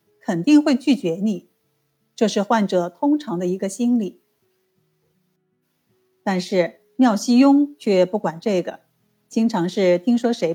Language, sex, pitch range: Chinese, female, 175-240 Hz